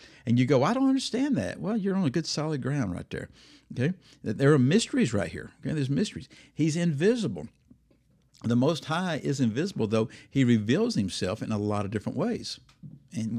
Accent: American